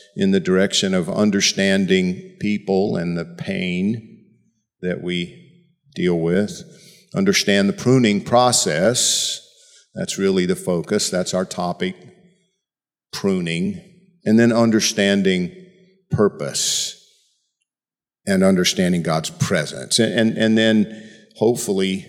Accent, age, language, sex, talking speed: American, 50-69, English, male, 105 wpm